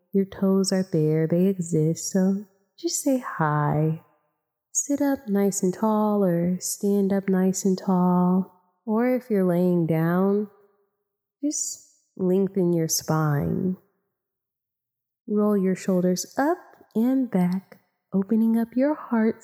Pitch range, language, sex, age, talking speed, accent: 165-215 Hz, English, female, 20-39, 125 wpm, American